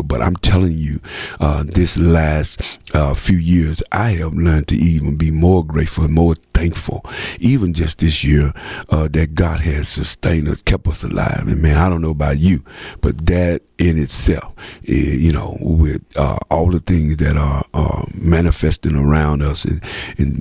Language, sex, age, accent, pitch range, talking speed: English, male, 50-69, American, 75-85 Hz, 175 wpm